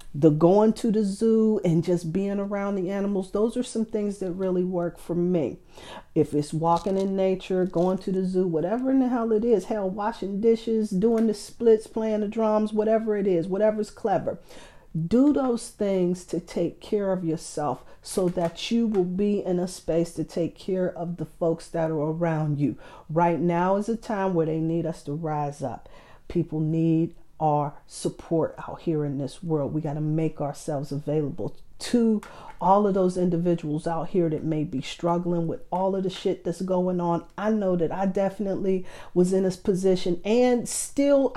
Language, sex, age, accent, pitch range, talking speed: English, female, 40-59, American, 165-215 Hz, 190 wpm